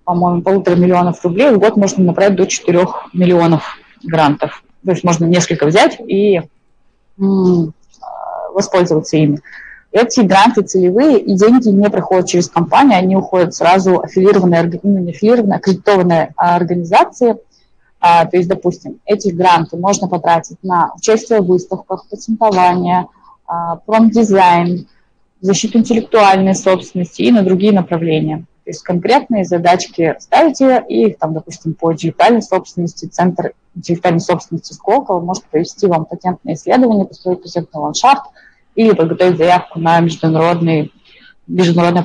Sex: female